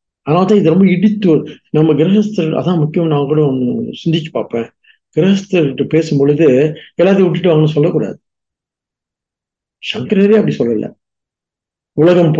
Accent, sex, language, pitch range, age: Indian, male, English, 140-195 Hz, 50-69